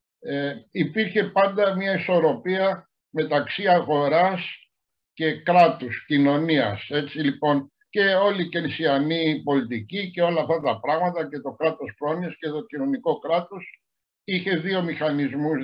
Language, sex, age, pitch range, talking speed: Greek, male, 60-79, 140-170 Hz, 125 wpm